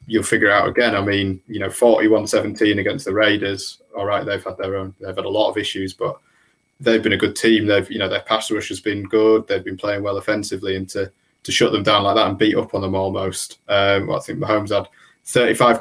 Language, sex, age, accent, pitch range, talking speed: English, male, 20-39, British, 105-115 Hz, 250 wpm